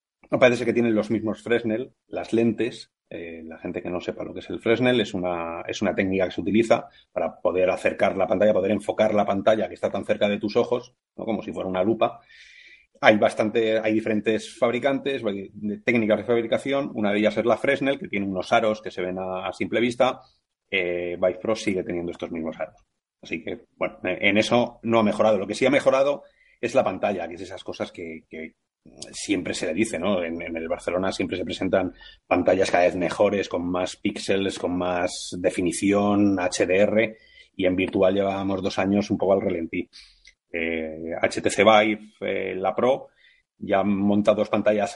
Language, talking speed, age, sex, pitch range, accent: Spanish, 200 wpm, 30-49, male, 90-115 Hz, Spanish